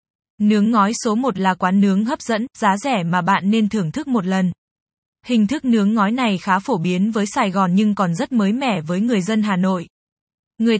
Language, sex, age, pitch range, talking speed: Vietnamese, female, 20-39, 190-230 Hz, 220 wpm